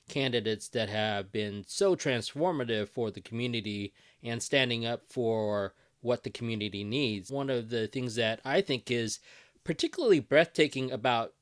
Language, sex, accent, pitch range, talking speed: English, male, American, 115-145 Hz, 145 wpm